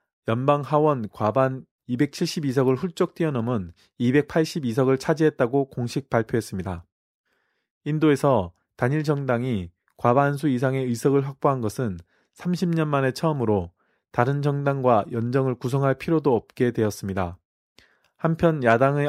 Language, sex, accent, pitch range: Korean, male, native, 115-145 Hz